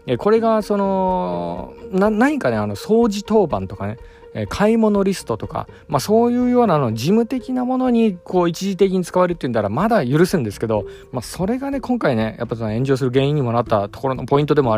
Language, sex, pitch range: Japanese, male, 105-175 Hz